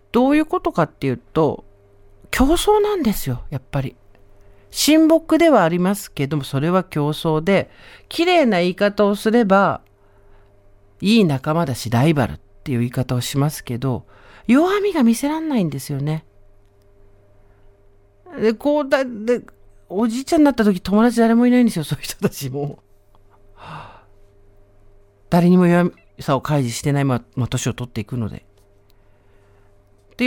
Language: Japanese